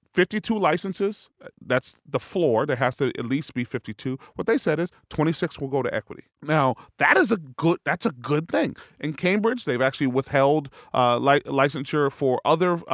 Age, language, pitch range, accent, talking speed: 30-49, English, 130-170 Hz, American, 175 wpm